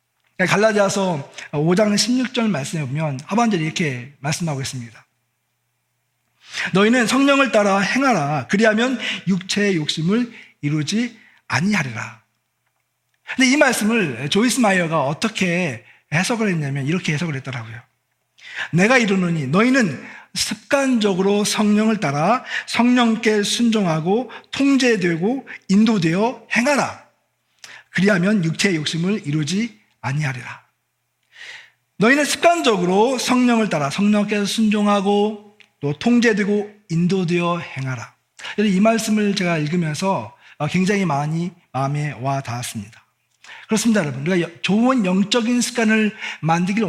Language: Korean